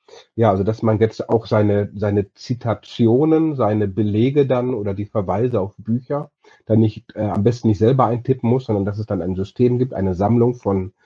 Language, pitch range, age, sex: German, 105-120 Hz, 40-59, male